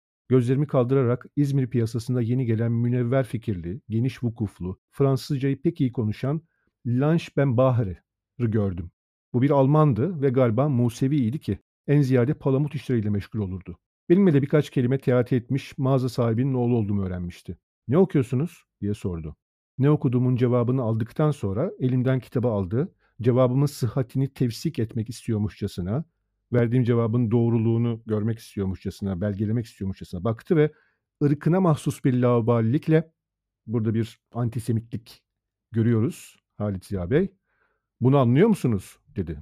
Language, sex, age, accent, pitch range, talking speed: Turkish, male, 50-69, native, 110-140 Hz, 130 wpm